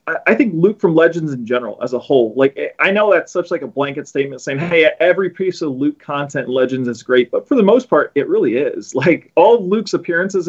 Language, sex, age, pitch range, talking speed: English, male, 30-49, 130-185 Hz, 240 wpm